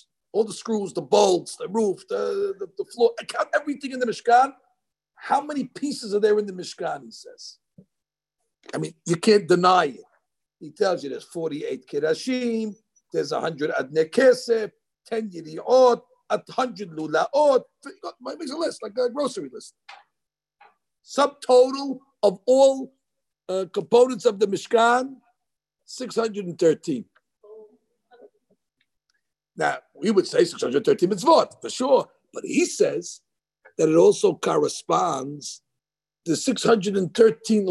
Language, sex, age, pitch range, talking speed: English, male, 50-69, 210-315 Hz, 130 wpm